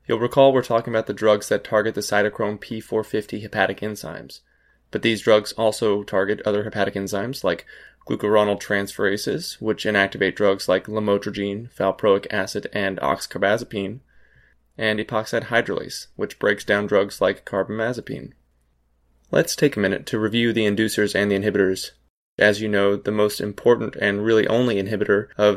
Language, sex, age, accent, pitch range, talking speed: English, male, 20-39, American, 100-110 Hz, 150 wpm